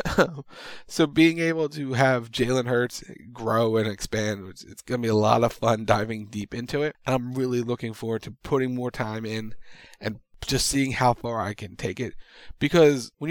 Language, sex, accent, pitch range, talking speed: English, male, American, 110-145 Hz, 195 wpm